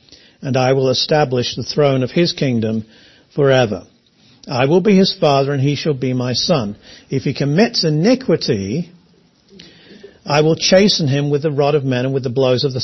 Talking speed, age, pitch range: 185 wpm, 50-69, 125-160 Hz